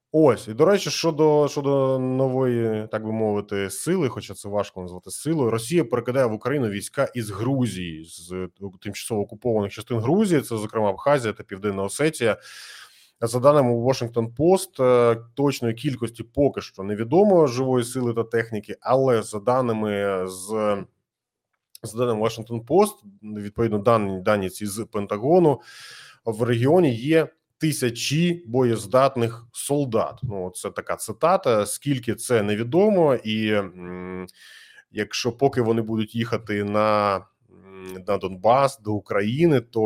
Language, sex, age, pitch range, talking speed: Ukrainian, male, 20-39, 105-130 Hz, 130 wpm